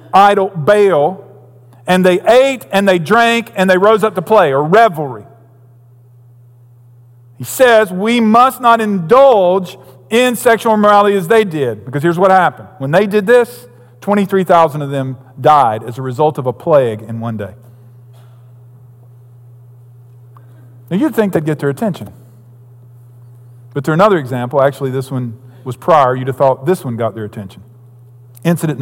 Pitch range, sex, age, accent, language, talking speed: 120-180 Hz, male, 50-69, American, English, 155 wpm